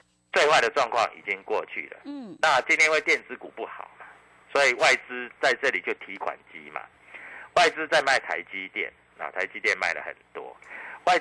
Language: Chinese